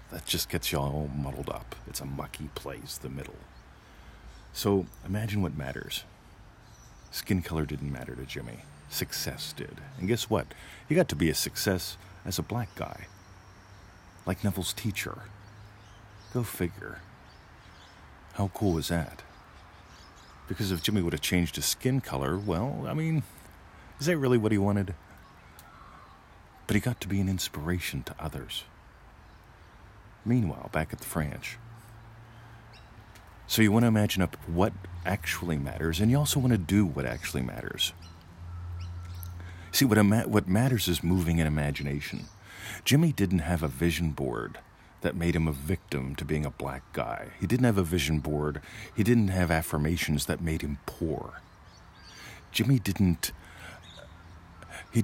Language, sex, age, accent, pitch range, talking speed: English, male, 40-59, American, 80-105 Hz, 150 wpm